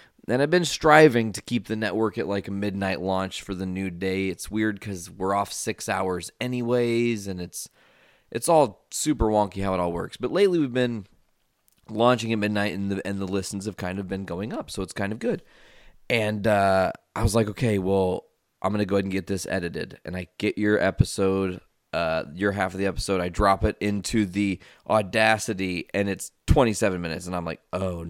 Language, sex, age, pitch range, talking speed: English, male, 20-39, 95-110 Hz, 210 wpm